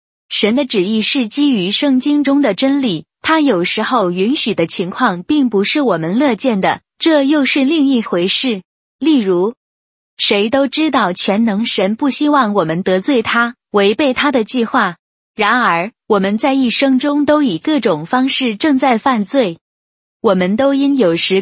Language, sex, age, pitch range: Chinese, female, 20-39, 195-275 Hz